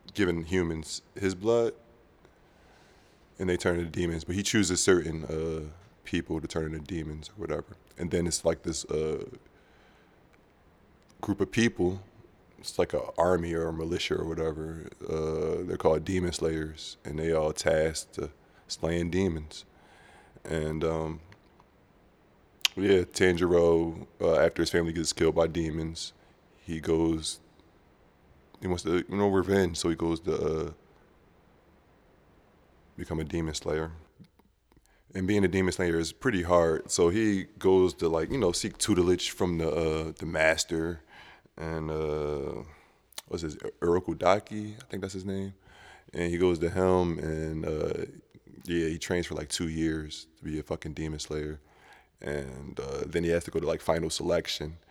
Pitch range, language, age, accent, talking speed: 80-90 Hz, English, 20-39, American, 155 wpm